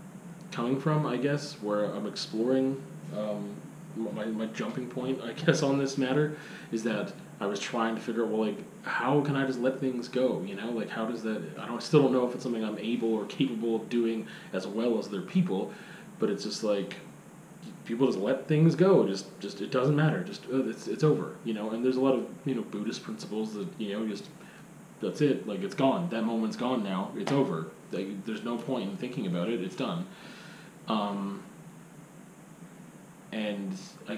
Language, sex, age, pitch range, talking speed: English, male, 20-39, 110-150 Hz, 205 wpm